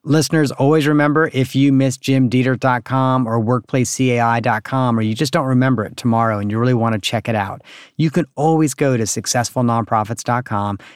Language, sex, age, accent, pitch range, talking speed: English, male, 40-59, American, 110-135 Hz, 165 wpm